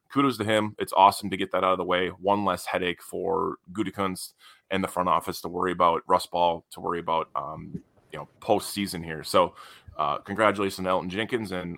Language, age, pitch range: English, 20-39, 90-100 Hz